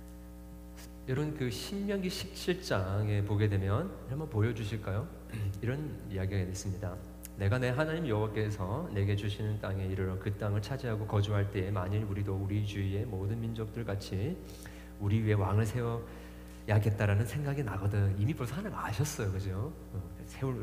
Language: Korean